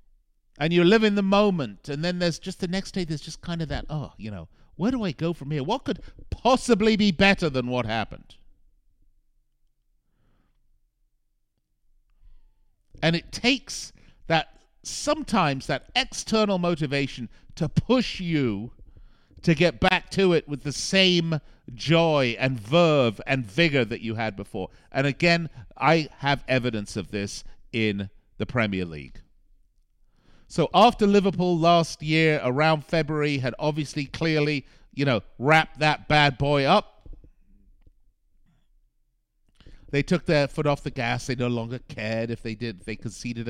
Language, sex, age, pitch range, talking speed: English, male, 50-69, 115-170 Hz, 150 wpm